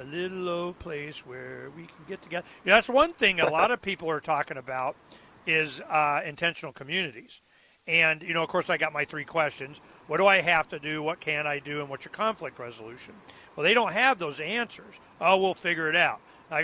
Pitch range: 150-195 Hz